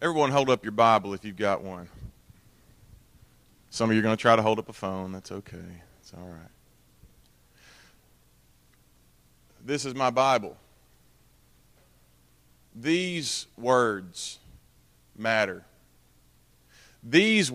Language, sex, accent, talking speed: English, male, American, 115 wpm